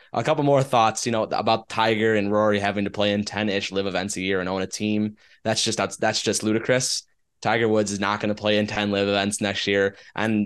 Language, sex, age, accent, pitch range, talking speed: English, male, 20-39, American, 100-115 Hz, 250 wpm